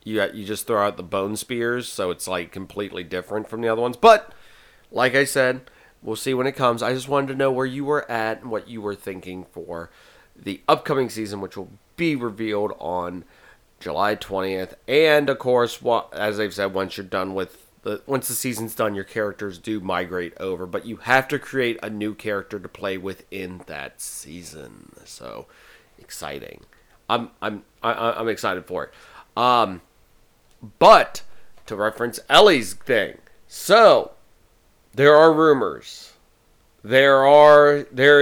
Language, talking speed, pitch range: English, 165 wpm, 95-130 Hz